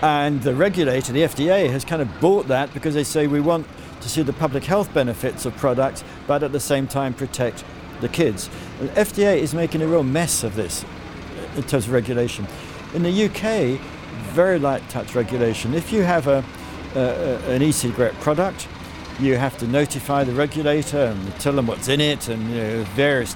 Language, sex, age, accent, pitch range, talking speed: English, male, 60-79, British, 115-165 Hz, 195 wpm